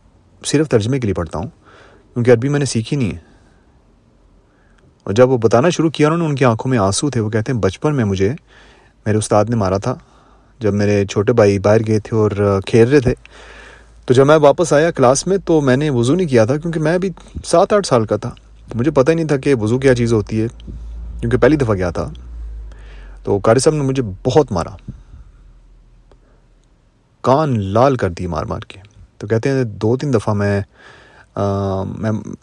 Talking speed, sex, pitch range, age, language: 205 wpm, male, 95-130 Hz, 30-49, Urdu